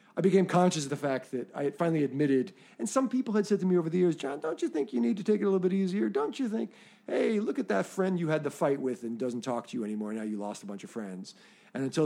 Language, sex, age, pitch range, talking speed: English, male, 40-59, 125-210 Hz, 310 wpm